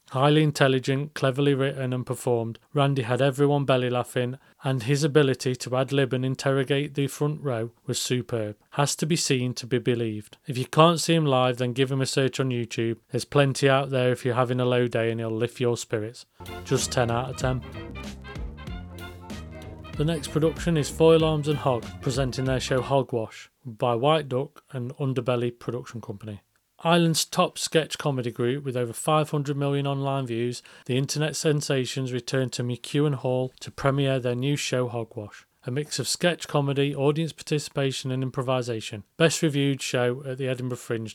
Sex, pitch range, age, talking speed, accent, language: male, 120-145 Hz, 30-49, 180 wpm, British, English